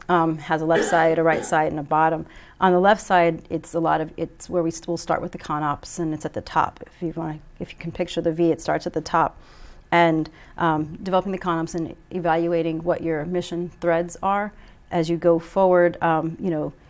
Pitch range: 160-175 Hz